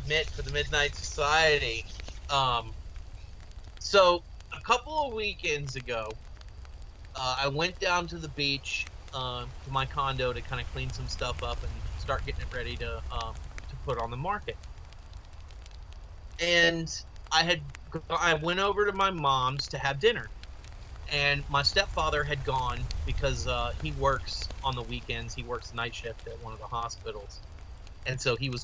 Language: English